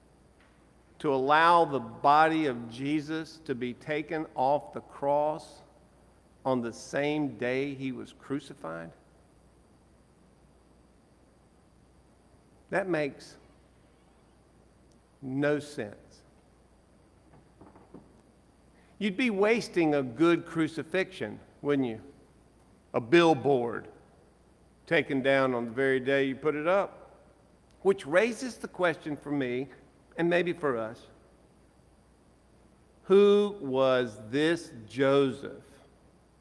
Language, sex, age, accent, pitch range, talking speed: English, male, 50-69, American, 120-160 Hz, 95 wpm